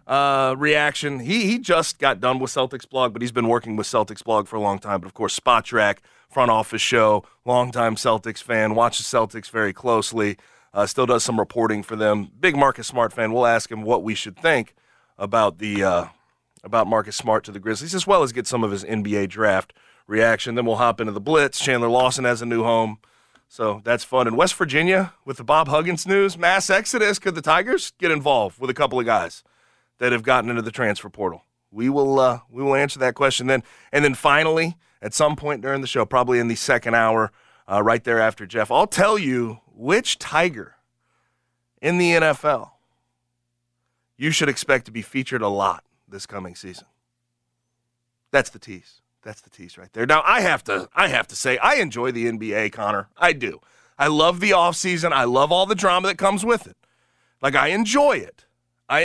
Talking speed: 205 wpm